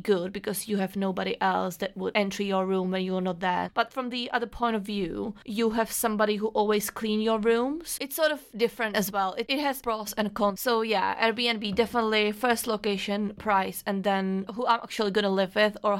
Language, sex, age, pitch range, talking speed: English, female, 30-49, 195-225 Hz, 220 wpm